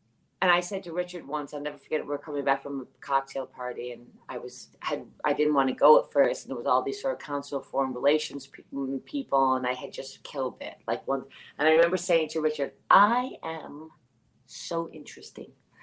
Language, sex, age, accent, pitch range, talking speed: English, female, 40-59, American, 155-255 Hz, 225 wpm